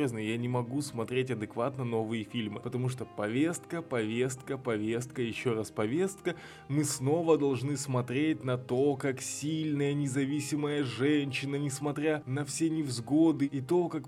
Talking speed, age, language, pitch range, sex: 135 wpm, 20-39, Russian, 125-160 Hz, male